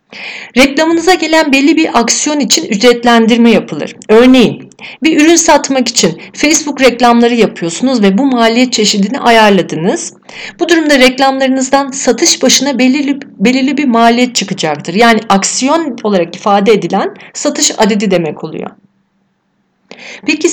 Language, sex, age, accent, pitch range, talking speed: Turkish, female, 40-59, native, 205-275 Hz, 115 wpm